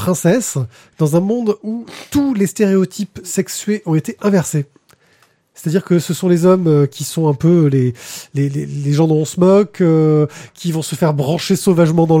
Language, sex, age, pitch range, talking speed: French, male, 20-39, 140-190 Hz, 195 wpm